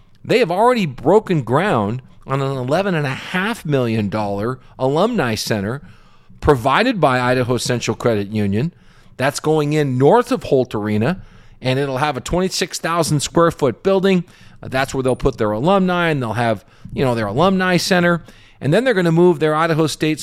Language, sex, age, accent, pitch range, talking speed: English, male, 40-59, American, 125-165 Hz, 155 wpm